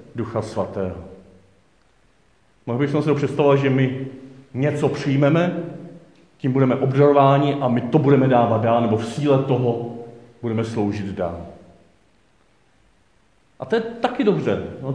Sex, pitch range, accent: male, 125-160 Hz, native